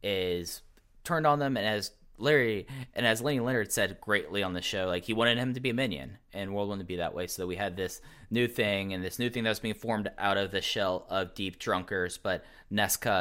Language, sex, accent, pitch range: English, male, American, 90-110 Hz